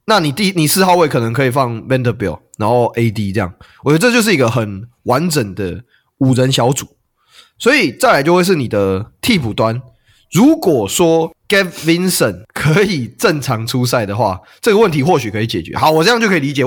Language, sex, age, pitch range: Chinese, male, 20-39, 115-175 Hz